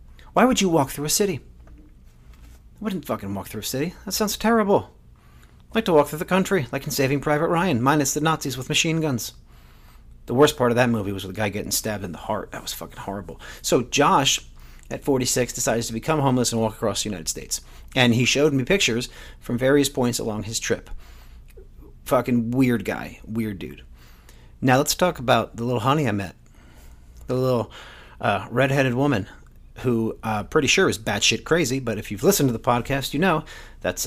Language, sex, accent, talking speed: English, male, American, 205 wpm